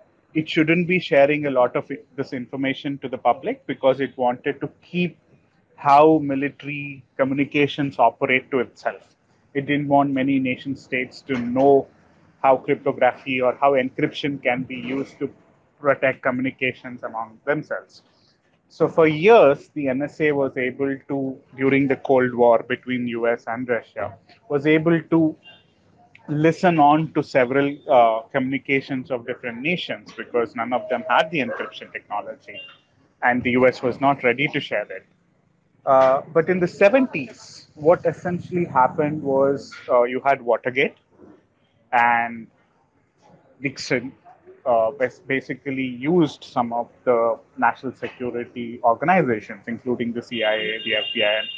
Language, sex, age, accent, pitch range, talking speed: Tamil, male, 30-49, native, 125-145 Hz, 140 wpm